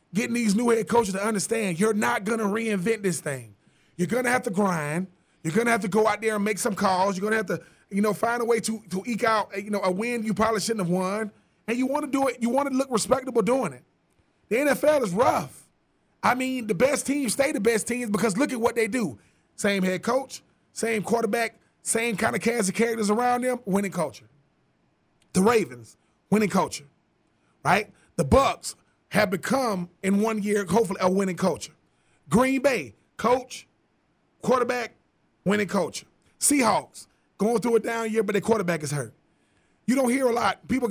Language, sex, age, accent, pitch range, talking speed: English, male, 30-49, American, 190-235 Hz, 205 wpm